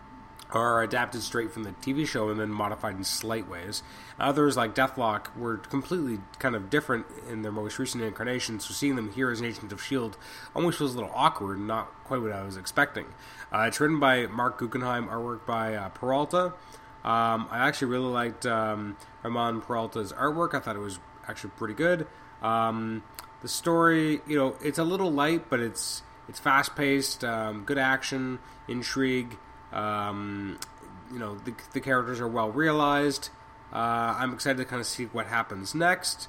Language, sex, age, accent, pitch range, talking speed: English, male, 20-39, American, 110-140 Hz, 180 wpm